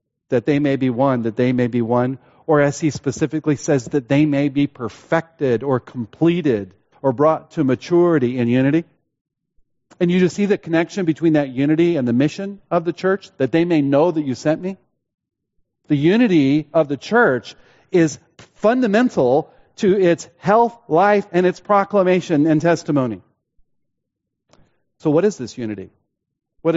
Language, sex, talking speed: English, male, 165 wpm